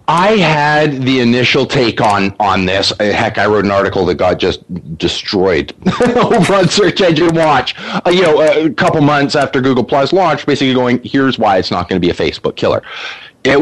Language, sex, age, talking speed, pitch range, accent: English, male, 30-49, 200 wpm, 105-150 Hz, American